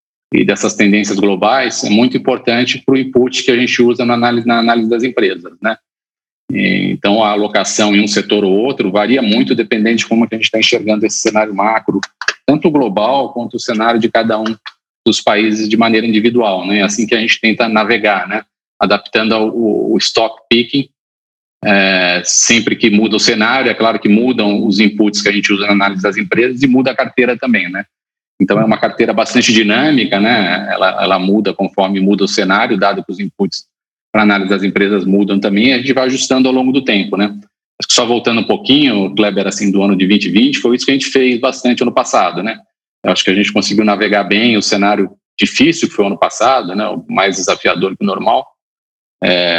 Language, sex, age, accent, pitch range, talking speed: Portuguese, male, 40-59, Brazilian, 100-120 Hz, 210 wpm